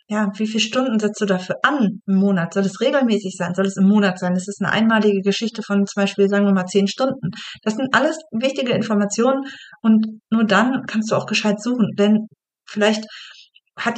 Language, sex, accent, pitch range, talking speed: German, female, German, 200-250 Hz, 205 wpm